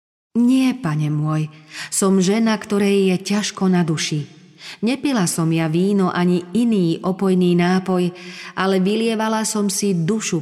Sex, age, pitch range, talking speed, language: female, 40-59, 165-200 Hz, 130 wpm, Slovak